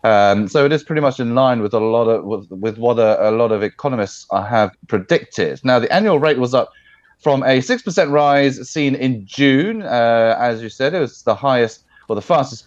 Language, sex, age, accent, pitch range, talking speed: English, male, 30-49, British, 110-150 Hz, 225 wpm